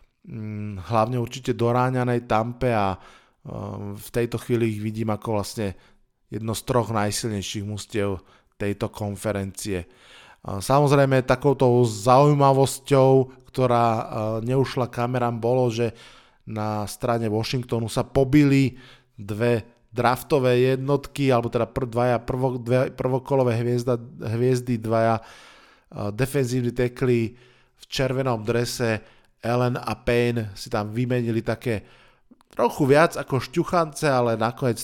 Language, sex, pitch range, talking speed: Slovak, male, 110-130 Hz, 100 wpm